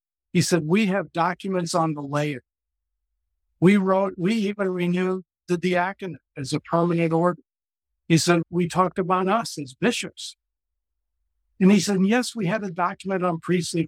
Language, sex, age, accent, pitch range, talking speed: English, male, 60-79, American, 155-200 Hz, 160 wpm